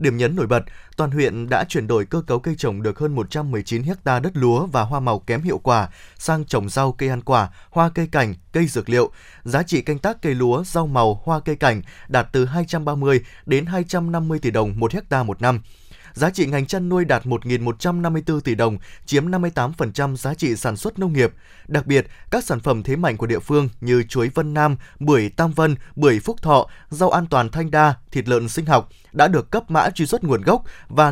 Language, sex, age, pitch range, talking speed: Vietnamese, male, 20-39, 120-165 Hz, 215 wpm